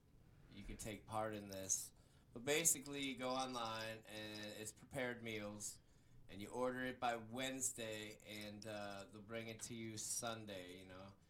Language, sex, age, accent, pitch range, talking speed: English, male, 20-39, American, 105-130 Hz, 165 wpm